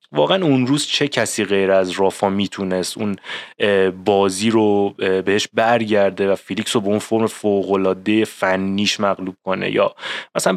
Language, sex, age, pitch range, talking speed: Persian, male, 20-39, 100-115 Hz, 150 wpm